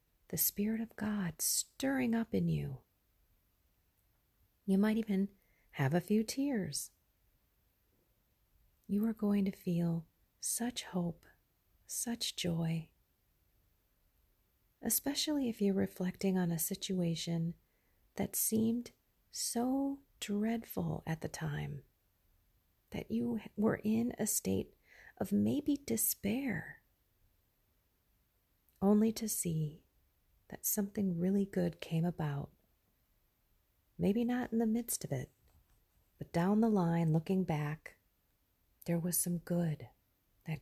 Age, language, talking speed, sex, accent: 40-59, English, 110 wpm, female, American